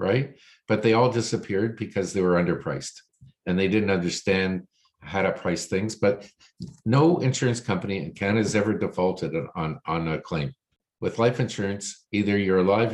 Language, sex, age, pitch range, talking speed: English, male, 50-69, 95-110 Hz, 165 wpm